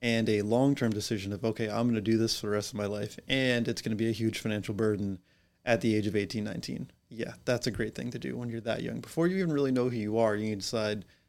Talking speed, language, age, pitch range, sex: 290 wpm, English, 30-49, 105-120 Hz, male